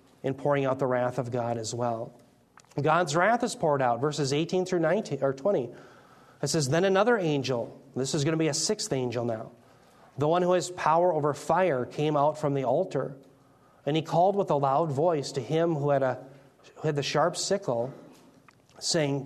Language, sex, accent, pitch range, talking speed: English, male, American, 135-170 Hz, 200 wpm